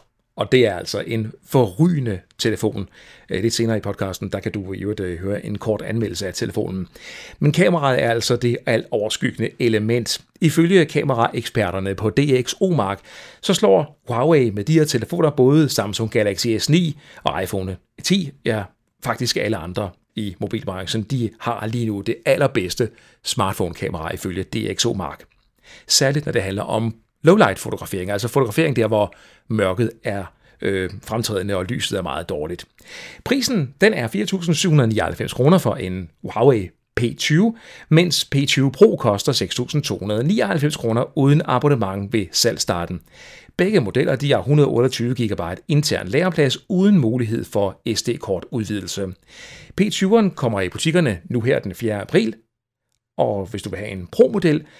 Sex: male